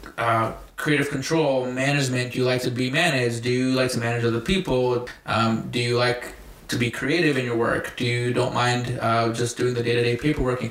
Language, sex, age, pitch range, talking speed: English, male, 20-39, 120-140 Hz, 215 wpm